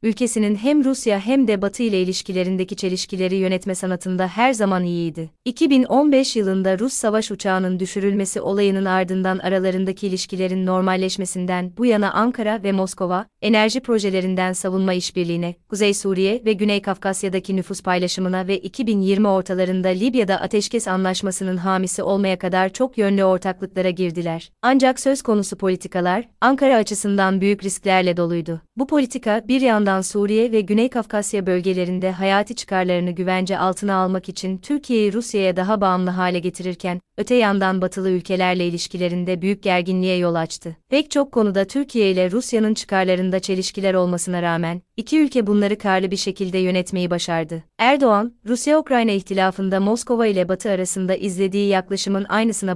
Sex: female